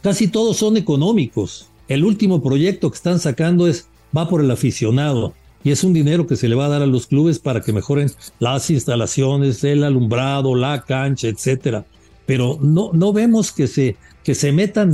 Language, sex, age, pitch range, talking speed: English, male, 60-79, 115-155 Hz, 190 wpm